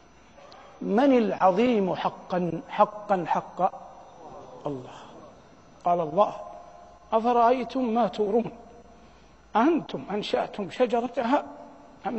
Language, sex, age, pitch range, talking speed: Arabic, male, 50-69, 210-280 Hz, 75 wpm